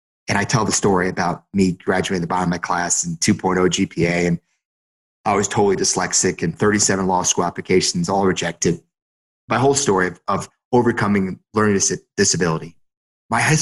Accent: American